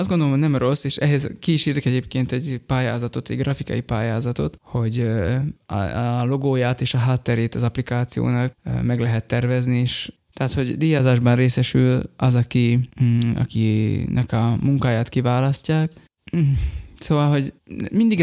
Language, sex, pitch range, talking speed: Hungarian, male, 125-150 Hz, 130 wpm